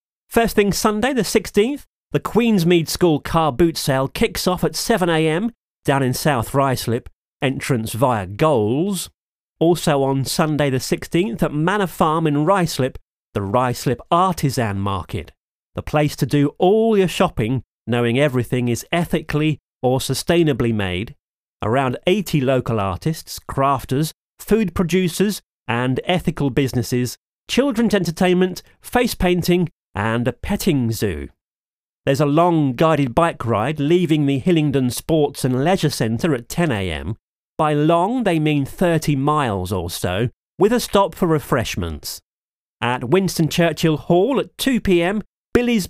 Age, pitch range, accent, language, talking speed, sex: 30-49, 125-180 Hz, British, English, 135 wpm, male